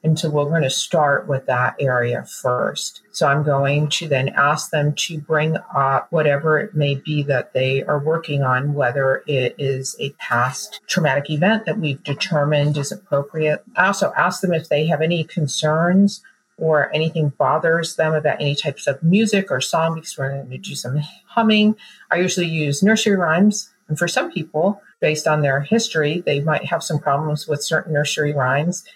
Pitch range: 135-160 Hz